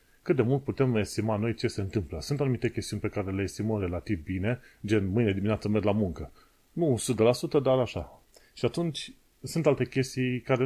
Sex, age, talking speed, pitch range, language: male, 30-49, 190 wpm, 105-135 Hz, Romanian